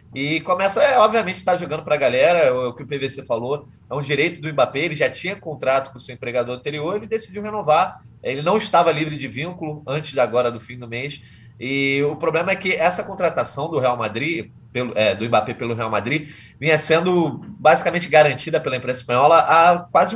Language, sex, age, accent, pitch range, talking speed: Portuguese, male, 20-39, Brazilian, 120-170 Hz, 215 wpm